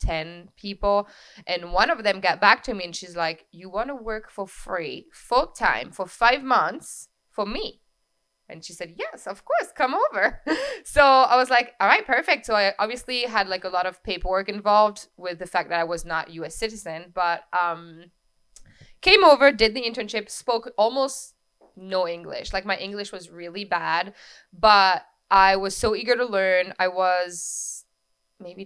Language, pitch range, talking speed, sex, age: English, 175-215 Hz, 180 wpm, female, 20-39